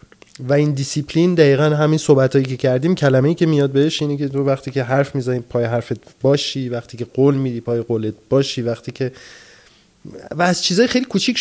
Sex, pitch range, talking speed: male, 125-170 Hz, 190 wpm